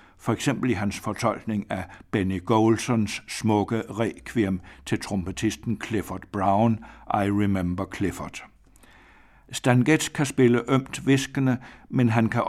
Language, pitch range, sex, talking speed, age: Danish, 100-120 Hz, male, 120 wpm, 60-79